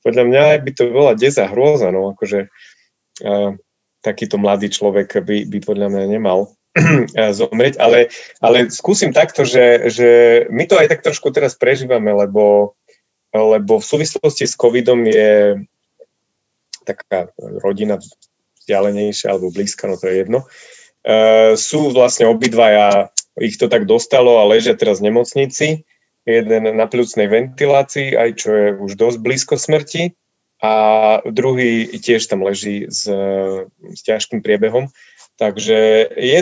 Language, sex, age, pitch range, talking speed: Slovak, male, 30-49, 105-130 Hz, 140 wpm